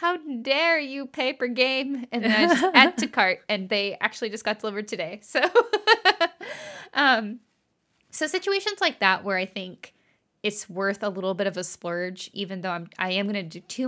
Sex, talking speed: female, 200 wpm